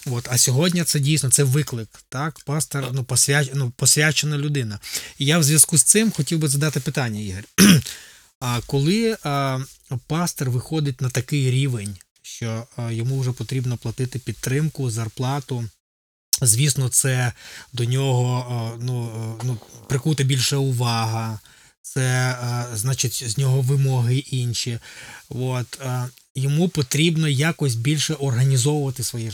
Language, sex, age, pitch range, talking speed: Ukrainian, male, 20-39, 120-145 Hz, 125 wpm